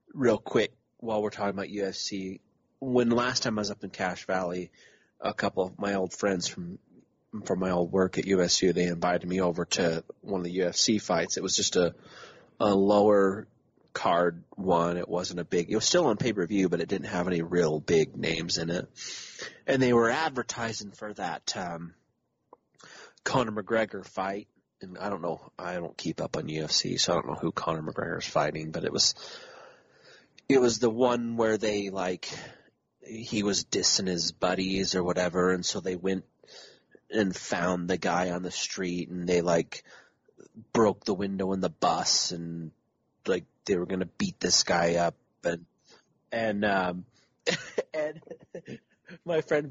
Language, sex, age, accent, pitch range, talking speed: English, male, 30-49, American, 90-115 Hz, 180 wpm